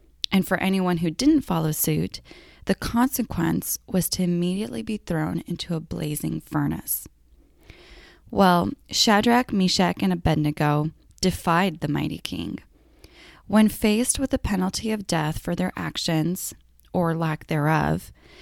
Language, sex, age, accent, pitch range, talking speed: English, female, 10-29, American, 160-205 Hz, 130 wpm